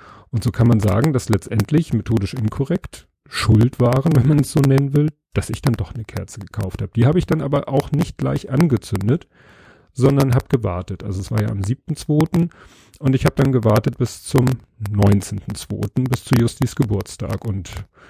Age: 40-59